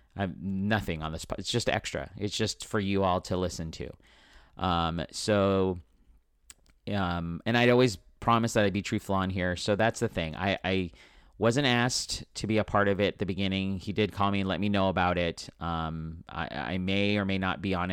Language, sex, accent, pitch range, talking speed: English, male, American, 85-105 Hz, 220 wpm